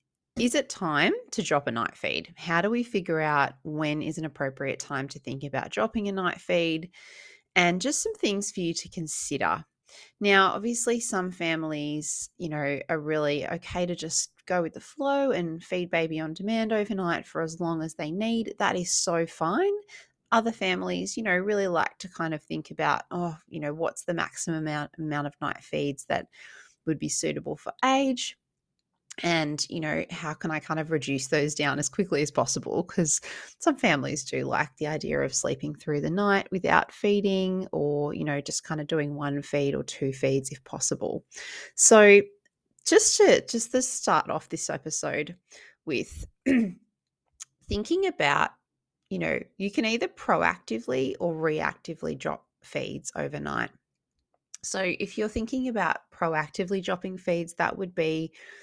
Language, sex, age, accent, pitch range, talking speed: English, female, 30-49, Australian, 150-205 Hz, 170 wpm